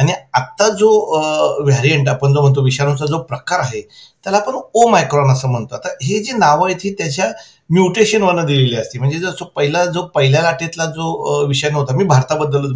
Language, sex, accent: Marathi, male, native